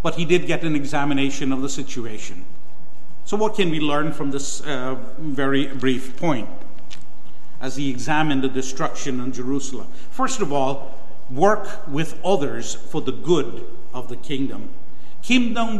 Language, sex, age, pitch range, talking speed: English, male, 50-69, 140-190 Hz, 150 wpm